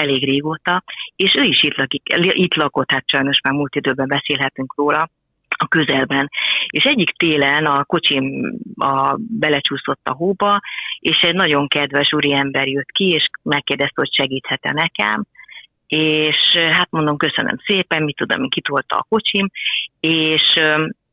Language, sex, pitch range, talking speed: Hungarian, female, 140-175 Hz, 140 wpm